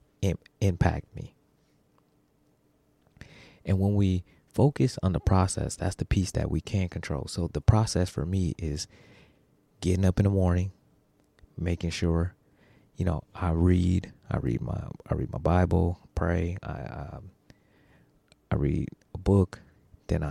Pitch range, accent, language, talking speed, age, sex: 85-95 Hz, American, English, 140 wpm, 30-49, male